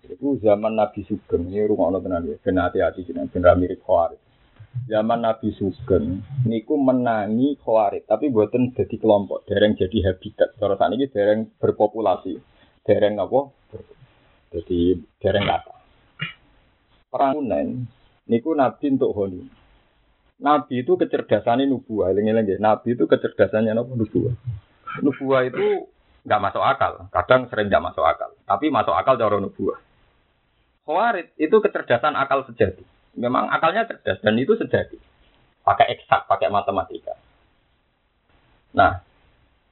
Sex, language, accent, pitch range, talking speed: male, Indonesian, native, 105-150 Hz, 125 wpm